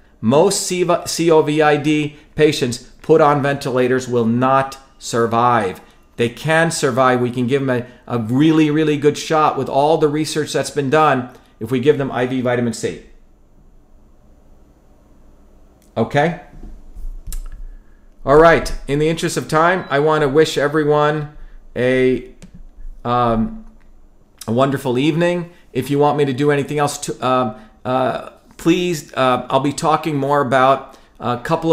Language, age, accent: English, 40-59, American